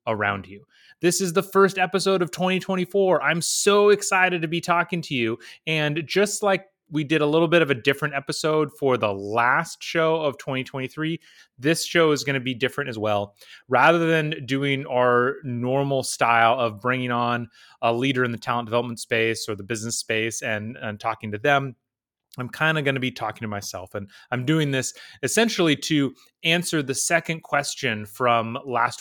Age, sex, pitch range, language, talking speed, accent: 30-49, male, 115-160 Hz, English, 185 wpm, American